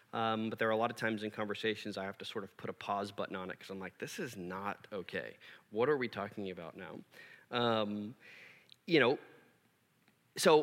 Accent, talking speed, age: American, 215 wpm, 30-49